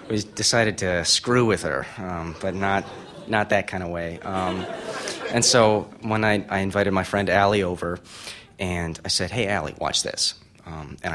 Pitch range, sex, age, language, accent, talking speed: 90-120 Hz, male, 30-49, English, American, 185 wpm